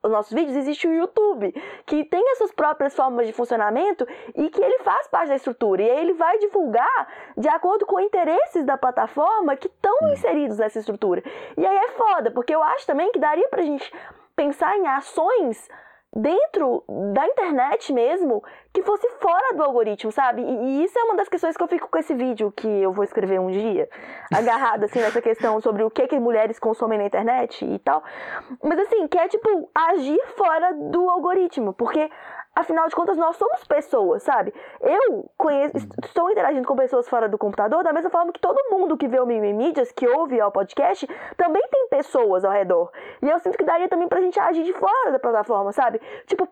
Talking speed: 200 wpm